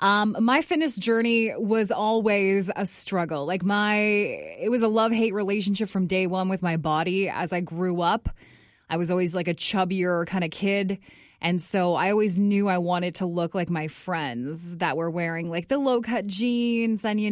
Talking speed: 190 wpm